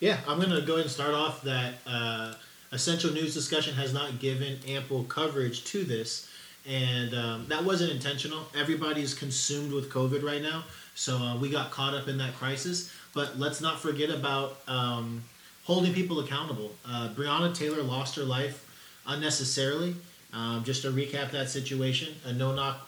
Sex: male